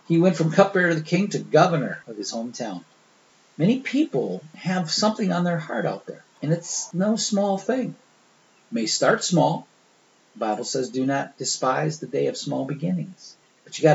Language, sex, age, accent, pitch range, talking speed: English, male, 40-59, American, 140-185 Hz, 190 wpm